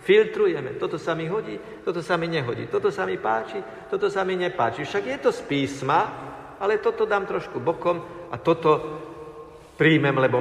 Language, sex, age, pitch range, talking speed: Slovak, male, 50-69, 120-165 Hz, 180 wpm